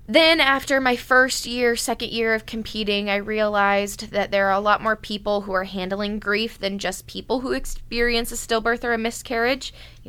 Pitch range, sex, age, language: 190-215 Hz, female, 20-39, English